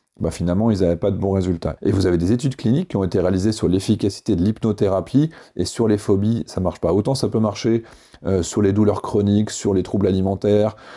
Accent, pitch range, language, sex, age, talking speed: French, 95-120 Hz, French, male, 30-49, 230 wpm